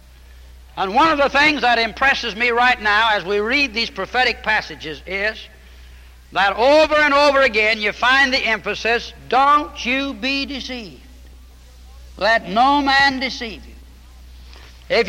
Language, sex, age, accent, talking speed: English, male, 60-79, American, 145 wpm